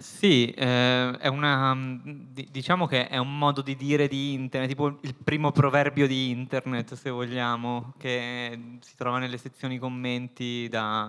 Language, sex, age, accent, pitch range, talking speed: Italian, male, 20-39, native, 115-130 Hz, 150 wpm